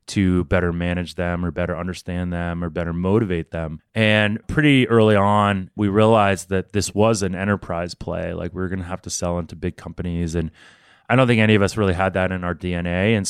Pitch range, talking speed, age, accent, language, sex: 90-105 Hz, 220 wpm, 30-49, American, English, male